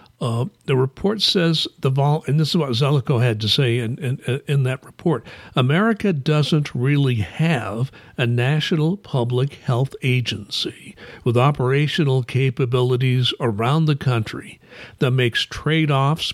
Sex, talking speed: male, 135 wpm